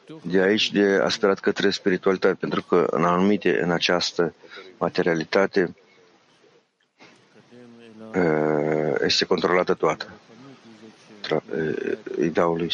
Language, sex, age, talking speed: English, male, 50-69, 80 wpm